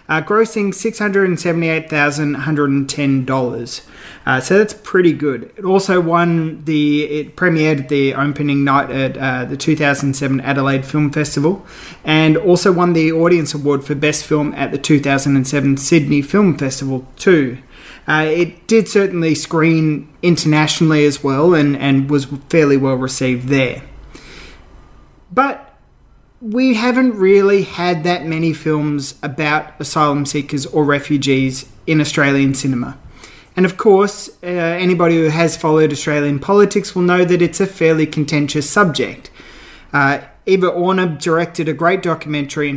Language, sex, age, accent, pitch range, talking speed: English, male, 30-49, Australian, 140-170 Hz, 155 wpm